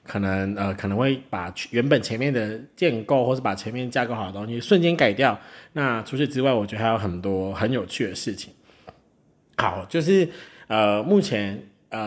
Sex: male